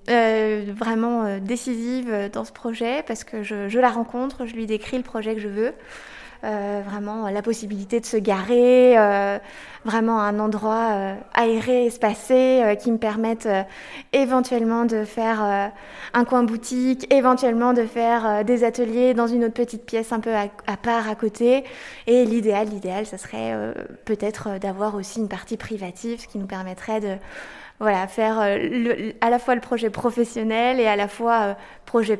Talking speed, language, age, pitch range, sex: 175 wpm, French, 20-39, 205-240 Hz, female